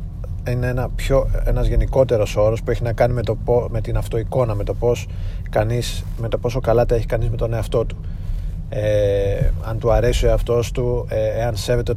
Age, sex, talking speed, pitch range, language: 30-49, male, 195 wpm, 100-120 Hz, Greek